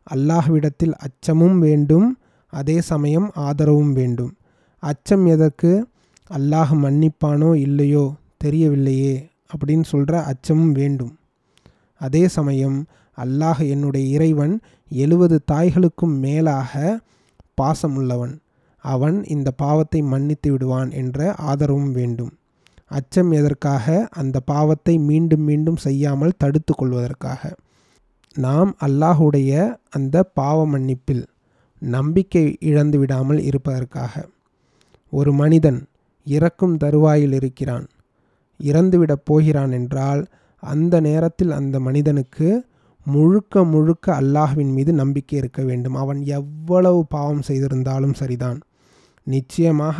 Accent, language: native, Tamil